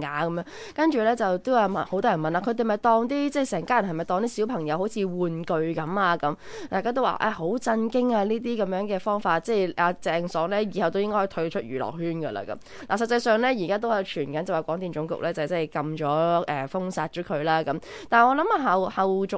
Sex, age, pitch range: female, 20-39, 160-210 Hz